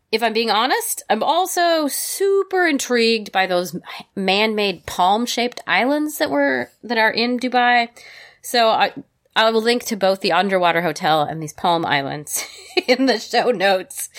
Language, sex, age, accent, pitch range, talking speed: English, female, 30-49, American, 165-235 Hz, 155 wpm